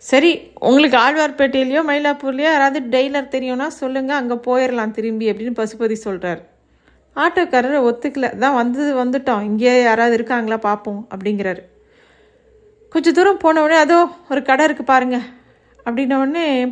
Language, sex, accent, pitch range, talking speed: Tamil, female, native, 225-280 Hz, 125 wpm